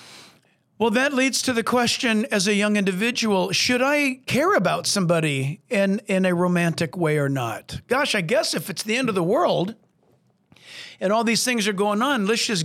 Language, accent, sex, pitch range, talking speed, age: English, American, male, 180-240 Hz, 195 wpm, 50-69